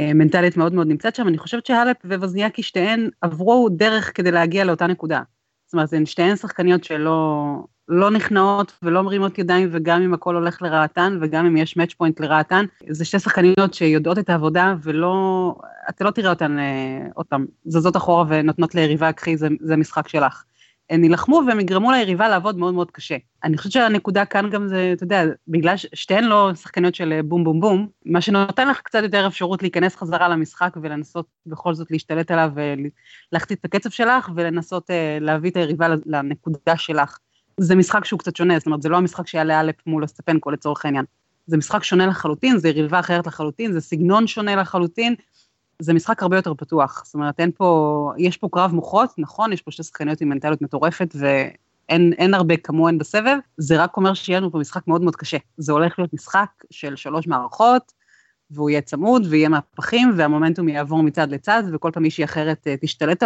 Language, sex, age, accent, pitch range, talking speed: Hebrew, female, 30-49, native, 155-190 Hz, 180 wpm